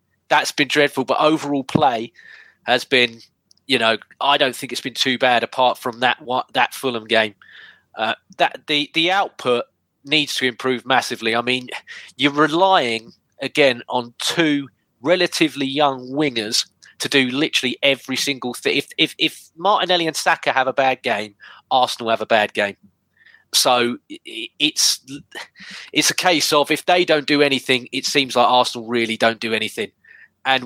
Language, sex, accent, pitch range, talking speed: English, male, British, 125-155 Hz, 165 wpm